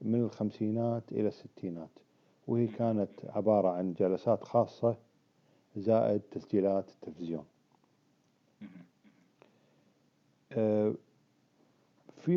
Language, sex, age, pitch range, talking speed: Arabic, male, 50-69, 95-120 Hz, 70 wpm